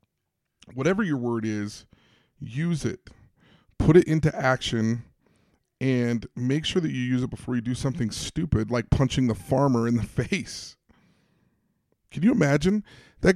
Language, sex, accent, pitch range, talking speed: English, male, American, 120-160 Hz, 150 wpm